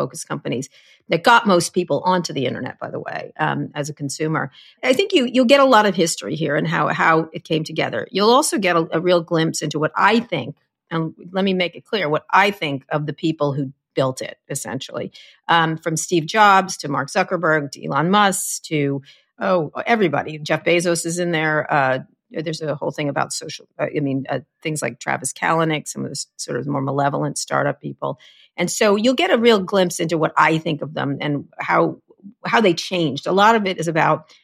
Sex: female